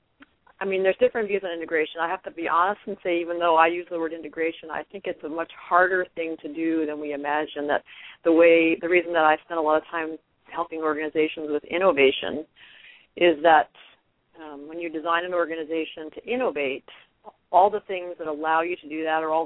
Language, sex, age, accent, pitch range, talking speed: English, female, 40-59, American, 155-180 Hz, 215 wpm